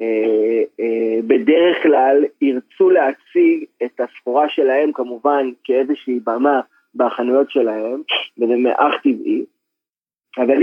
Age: 30-49